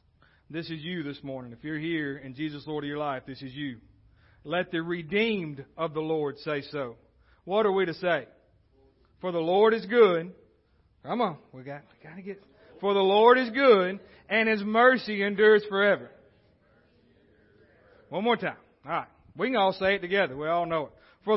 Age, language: 40-59, English